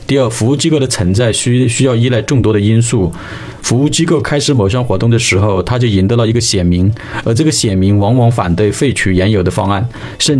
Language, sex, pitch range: Chinese, male, 105-135 Hz